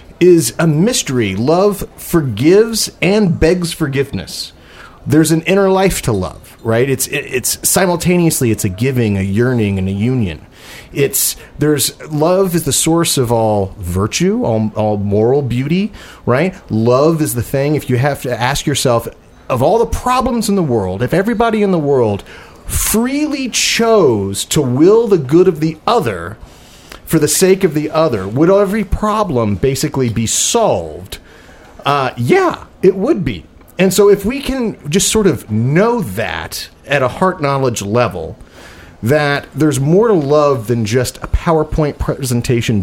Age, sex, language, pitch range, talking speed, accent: 40-59, male, English, 110-175 Hz, 160 wpm, American